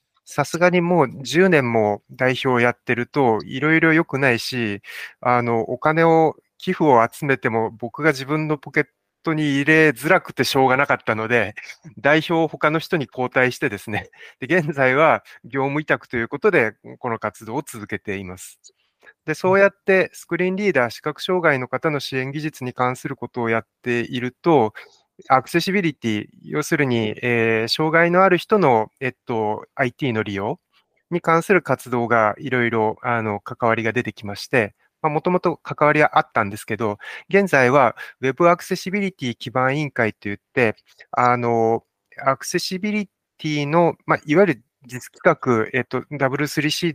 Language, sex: Japanese, male